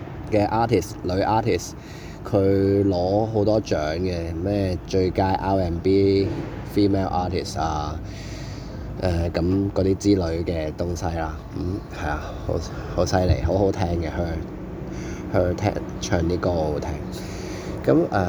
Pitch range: 85-105 Hz